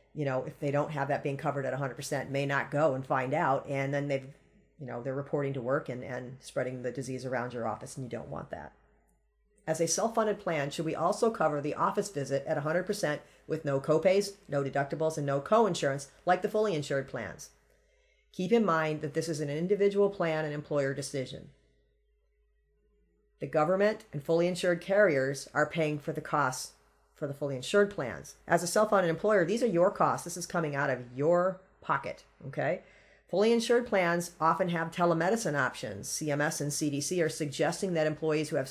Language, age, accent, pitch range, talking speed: English, 40-59, American, 140-180 Hz, 195 wpm